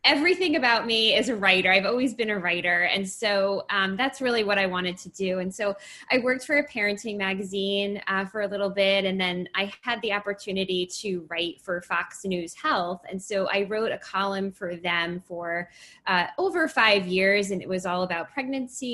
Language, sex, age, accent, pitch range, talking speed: English, female, 10-29, American, 180-215 Hz, 205 wpm